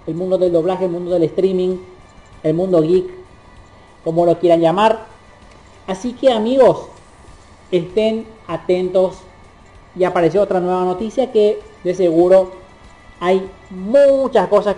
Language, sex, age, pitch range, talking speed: Spanish, male, 30-49, 120-185 Hz, 125 wpm